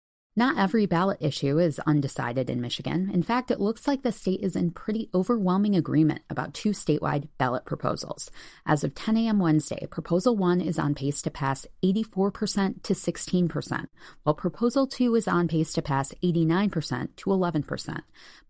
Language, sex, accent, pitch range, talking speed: English, female, American, 155-200 Hz, 165 wpm